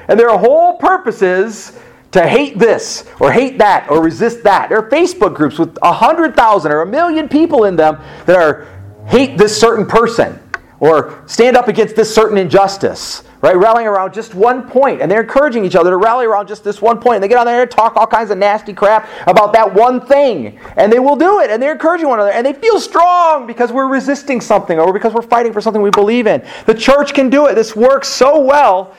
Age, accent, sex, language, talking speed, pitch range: 40-59, American, male, English, 230 wpm, 170-245 Hz